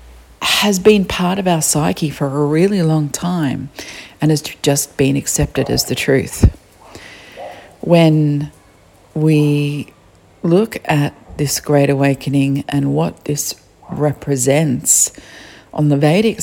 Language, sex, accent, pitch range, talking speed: English, female, Australian, 135-165 Hz, 120 wpm